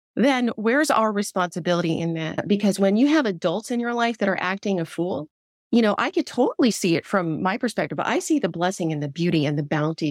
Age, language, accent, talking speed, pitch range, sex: 30-49, English, American, 235 wpm, 170-245 Hz, female